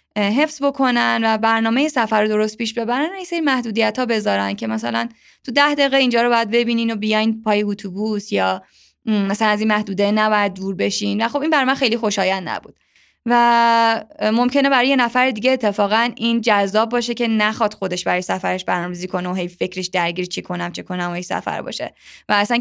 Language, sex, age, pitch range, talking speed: Persian, female, 20-39, 195-245 Hz, 195 wpm